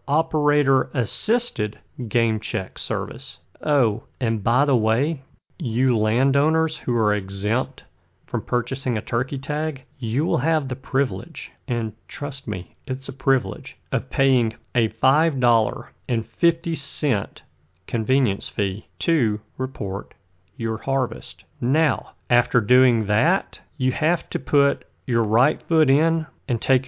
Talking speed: 125 wpm